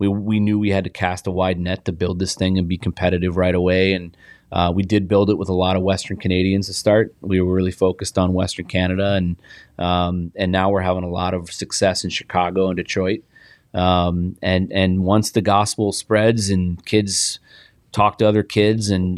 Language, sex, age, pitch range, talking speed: English, male, 30-49, 90-100 Hz, 215 wpm